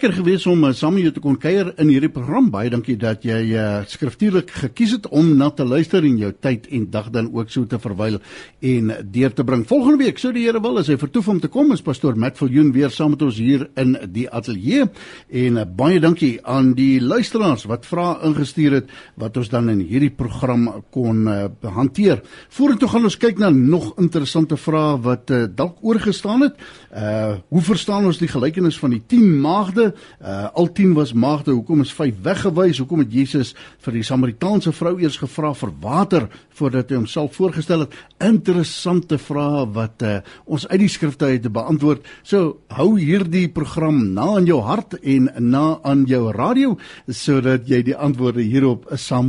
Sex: male